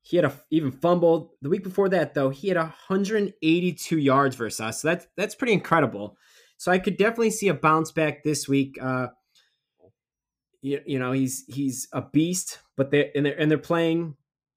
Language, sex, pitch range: English, male, 135-170 Hz